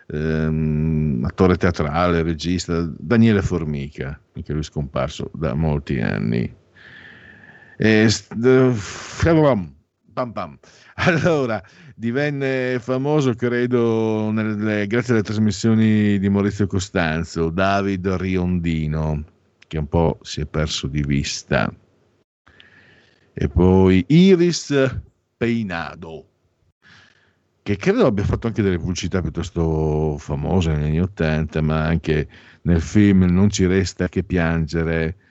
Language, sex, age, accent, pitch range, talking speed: Italian, male, 50-69, native, 80-105 Hz, 110 wpm